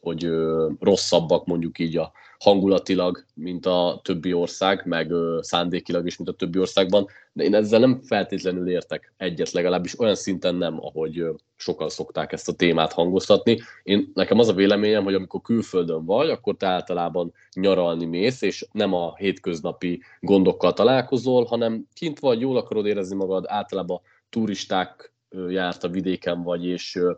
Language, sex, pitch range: Hungarian, male, 90-105 Hz